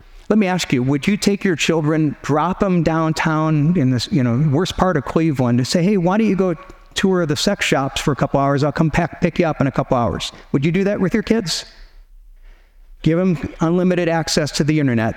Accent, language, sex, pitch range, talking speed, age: American, English, male, 140-185 Hz, 235 wpm, 50-69